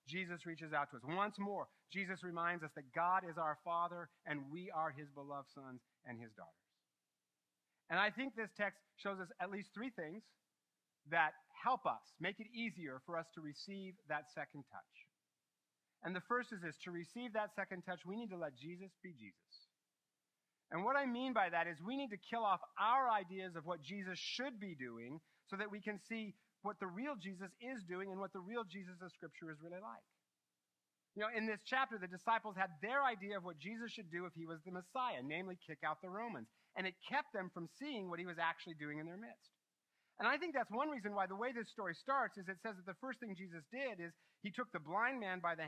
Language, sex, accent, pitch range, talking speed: English, male, American, 165-215 Hz, 230 wpm